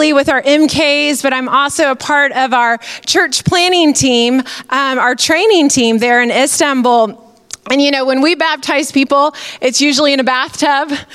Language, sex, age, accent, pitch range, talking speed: English, female, 30-49, American, 255-305 Hz, 170 wpm